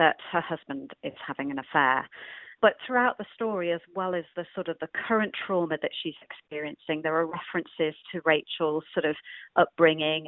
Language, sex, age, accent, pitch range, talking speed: English, female, 40-59, British, 160-180 Hz, 180 wpm